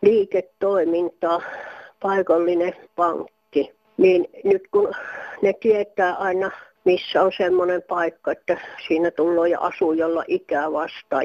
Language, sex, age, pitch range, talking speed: Finnish, female, 60-79, 165-225 Hz, 105 wpm